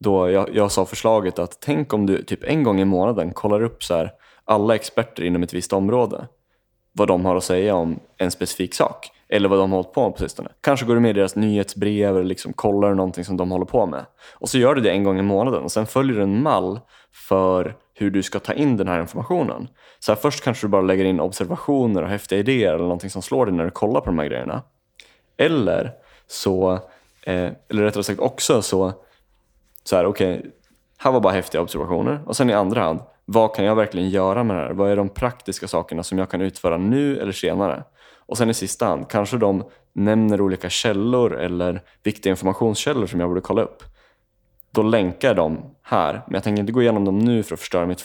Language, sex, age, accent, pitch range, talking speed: Swedish, male, 20-39, native, 95-110 Hz, 225 wpm